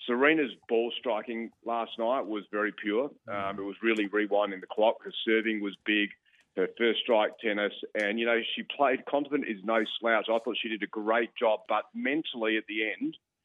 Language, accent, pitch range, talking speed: English, Australian, 100-115 Hz, 195 wpm